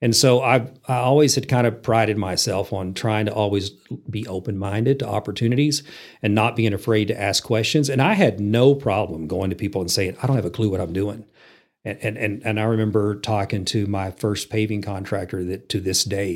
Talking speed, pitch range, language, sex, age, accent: 215 wpm, 100-125 Hz, English, male, 40-59, American